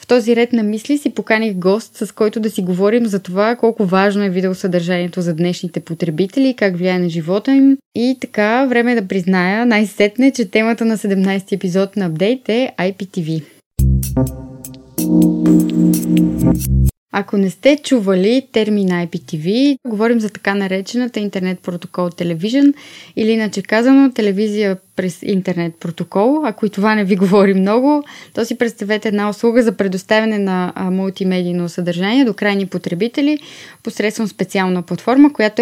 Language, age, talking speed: Bulgarian, 20-39, 145 wpm